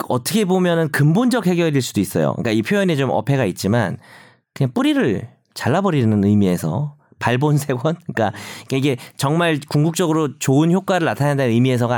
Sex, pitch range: male, 120-185 Hz